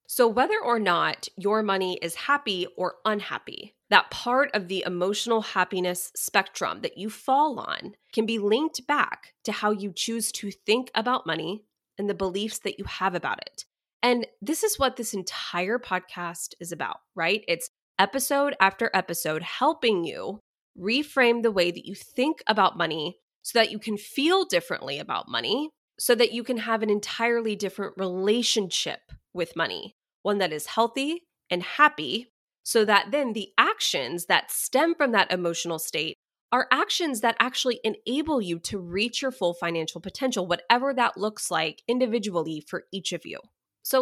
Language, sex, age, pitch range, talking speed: English, female, 20-39, 185-260 Hz, 170 wpm